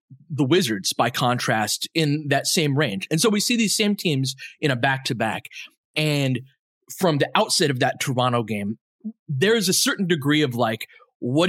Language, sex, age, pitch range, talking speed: English, male, 20-39, 130-175 Hz, 180 wpm